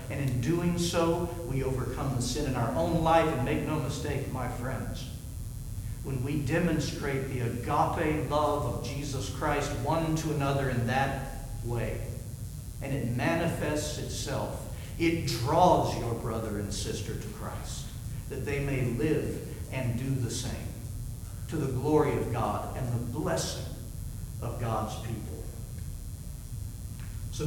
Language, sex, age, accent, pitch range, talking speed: English, male, 60-79, American, 115-150 Hz, 140 wpm